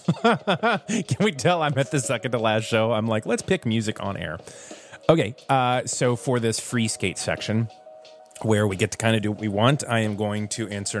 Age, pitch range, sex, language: 30-49, 95-125 Hz, male, English